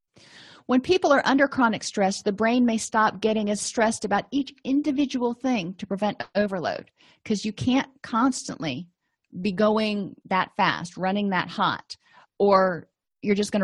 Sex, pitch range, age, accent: female, 185-240 Hz, 40-59, American